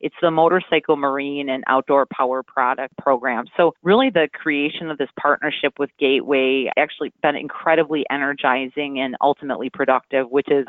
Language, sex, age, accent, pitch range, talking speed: English, female, 30-49, American, 135-155 Hz, 150 wpm